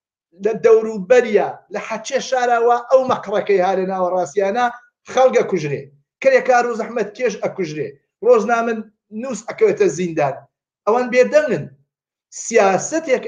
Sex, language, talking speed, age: male, Persian, 105 wpm, 50-69